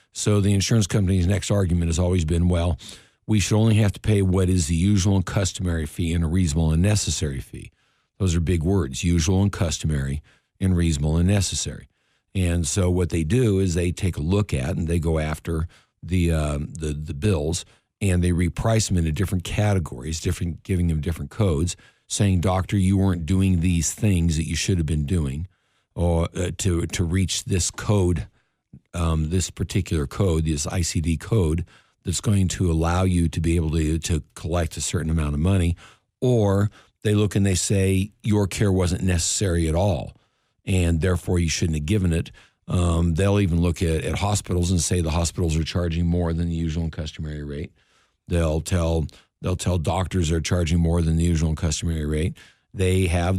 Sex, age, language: male, 60-79, English